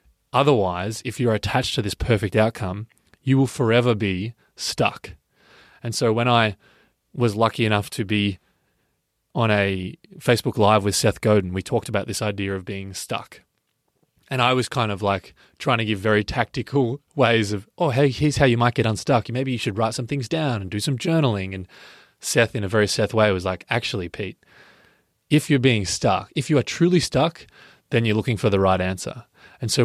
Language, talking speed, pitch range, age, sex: English, 195 wpm, 100-120 Hz, 20-39, male